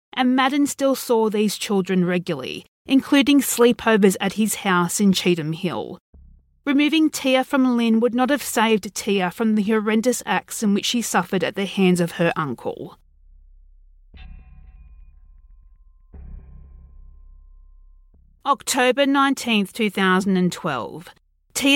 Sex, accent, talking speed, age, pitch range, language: female, Australian, 115 wpm, 40-59, 170-235 Hz, English